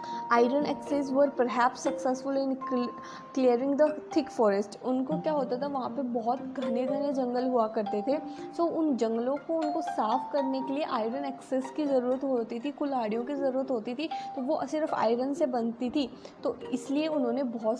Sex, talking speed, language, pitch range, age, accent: female, 180 wpm, English, 240-300 Hz, 20-39, Indian